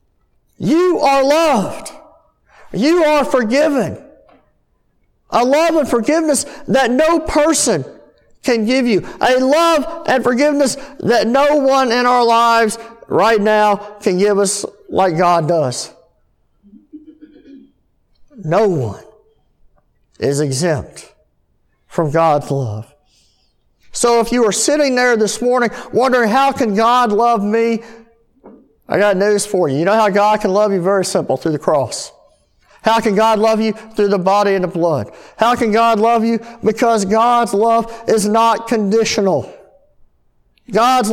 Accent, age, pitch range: American, 50-69, 195-255 Hz